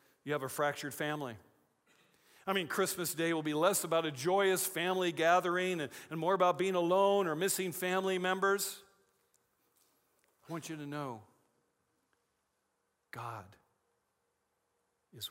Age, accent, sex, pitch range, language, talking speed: 50-69, American, male, 125-185 Hz, English, 135 wpm